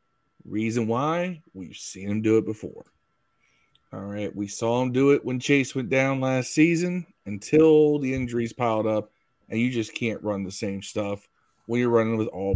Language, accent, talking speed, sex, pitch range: English, American, 185 wpm, male, 110-140 Hz